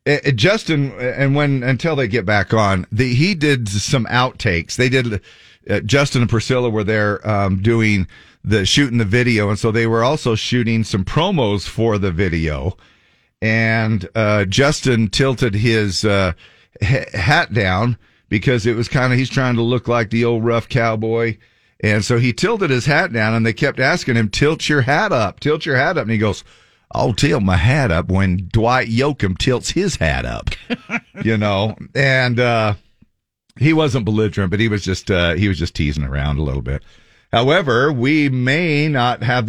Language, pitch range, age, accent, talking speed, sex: English, 100-125 Hz, 50-69, American, 180 wpm, male